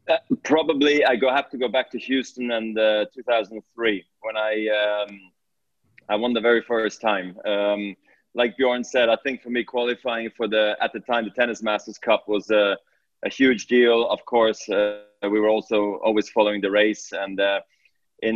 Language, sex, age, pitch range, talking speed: English, male, 20-39, 105-120 Hz, 200 wpm